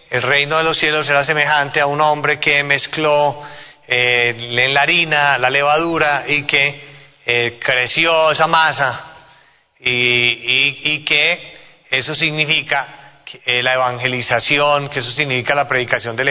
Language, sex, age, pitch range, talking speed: Spanish, male, 30-49, 125-150 Hz, 145 wpm